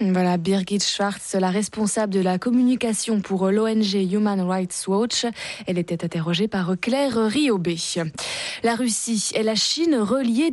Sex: female